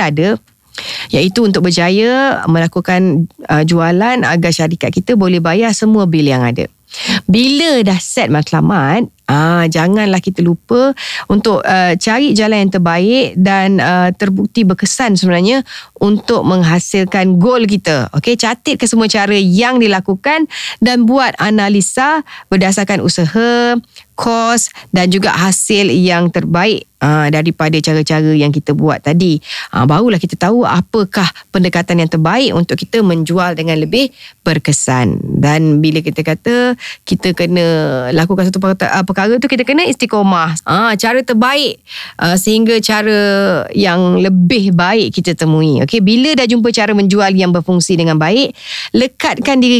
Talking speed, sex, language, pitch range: 135 wpm, female, Indonesian, 175-230 Hz